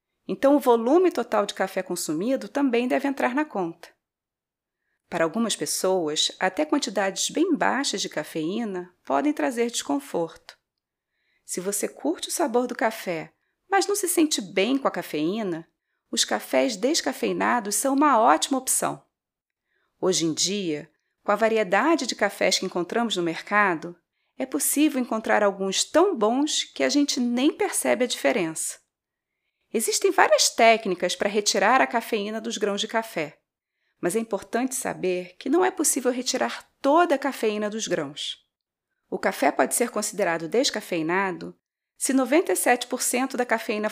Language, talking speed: Portuguese, 145 wpm